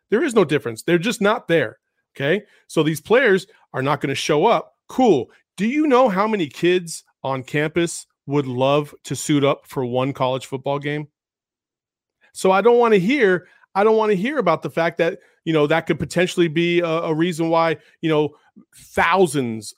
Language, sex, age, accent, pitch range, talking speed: English, male, 40-59, American, 140-185 Hz, 195 wpm